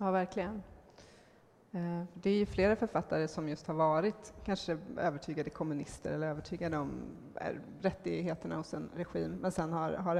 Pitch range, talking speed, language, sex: 155-180 Hz, 160 wpm, English, female